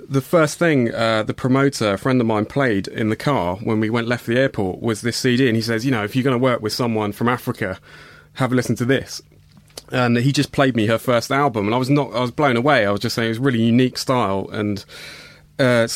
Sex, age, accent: male, 30-49, British